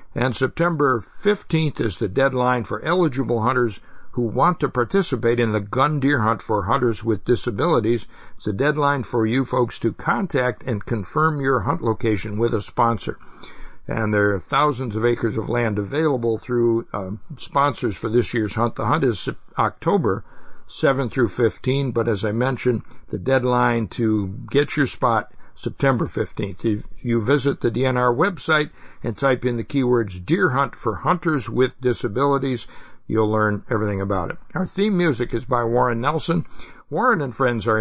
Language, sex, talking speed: English, male, 170 wpm